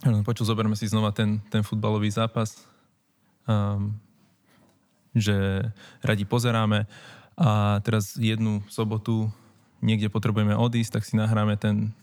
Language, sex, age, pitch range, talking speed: Slovak, male, 20-39, 105-115 Hz, 115 wpm